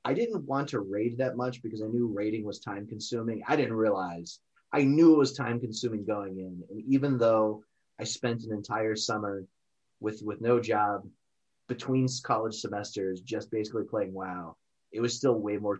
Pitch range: 100-120 Hz